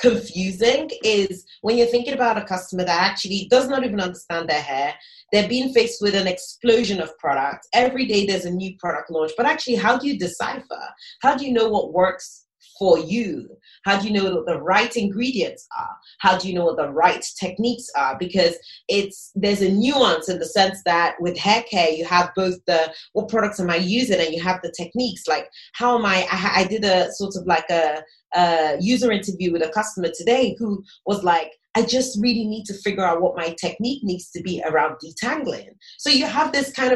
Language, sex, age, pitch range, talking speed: English, female, 30-49, 175-230 Hz, 215 wpm